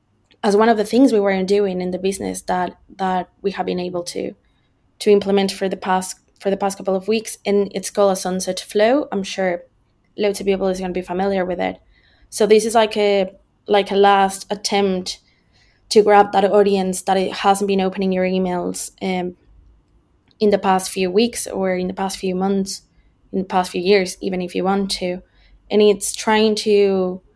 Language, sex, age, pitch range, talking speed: English, female, 20-39, 185-205 Hz, 205 wpm